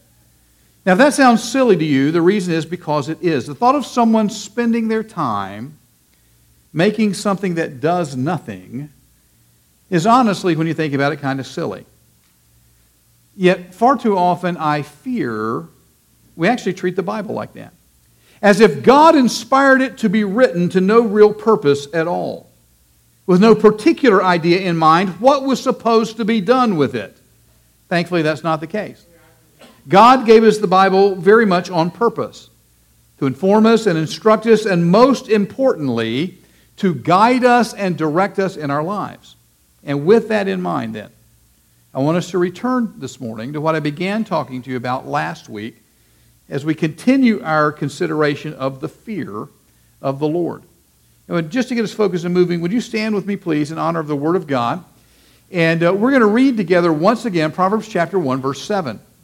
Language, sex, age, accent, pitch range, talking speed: English, male, 50-69, American, 135-215 Hz, 180 wpm